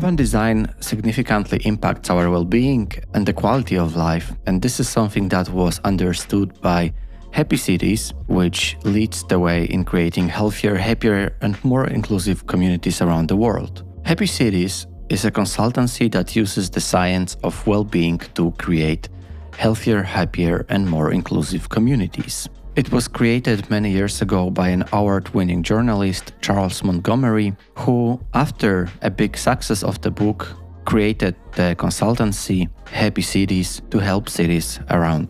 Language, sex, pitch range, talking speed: Polish, male, 90-110 Hz, 145 wpm